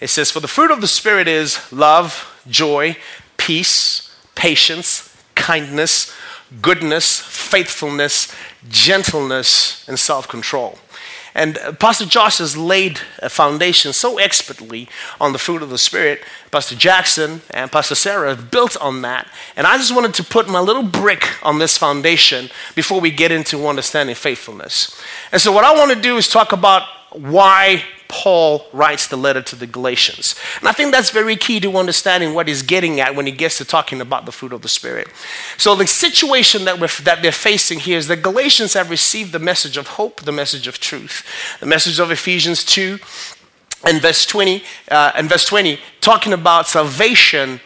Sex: male